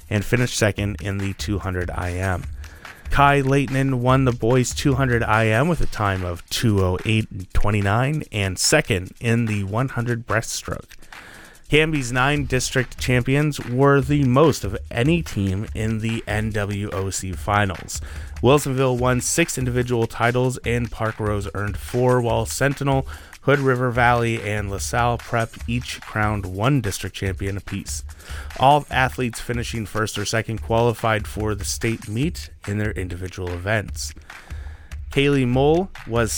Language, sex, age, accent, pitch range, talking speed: English, male, 30-49, American, 100-125 Hz, 135 wpm